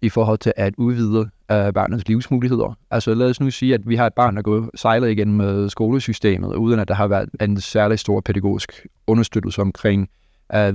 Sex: male